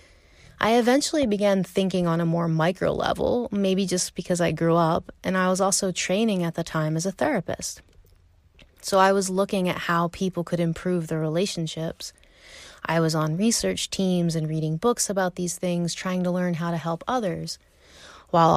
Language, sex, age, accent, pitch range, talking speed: English, female, 20-39, American, 165-195 Hz, 180 wpm